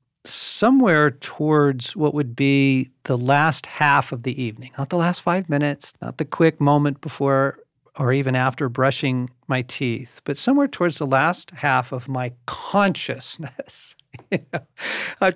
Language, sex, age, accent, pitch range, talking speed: English, male, 50-69, American, 125-150 Hz, 145 wpm